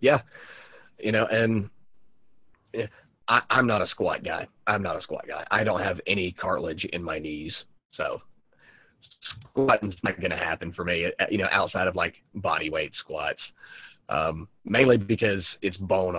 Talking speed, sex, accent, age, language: 160 wpm, male, American, 30-49, English